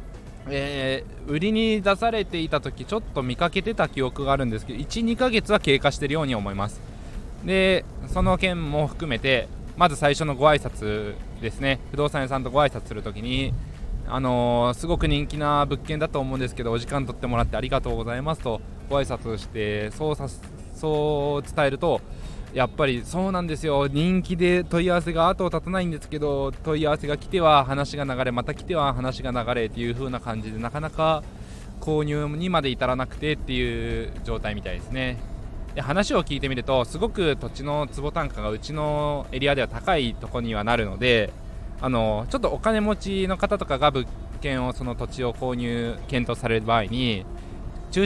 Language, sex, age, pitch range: Japanese, male, 20-39, 120-155 Hz